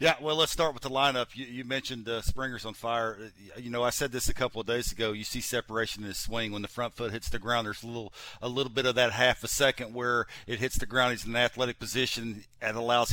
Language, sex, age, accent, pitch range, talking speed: English, male, 50-69, American, 115-135 Hz, 275 wpm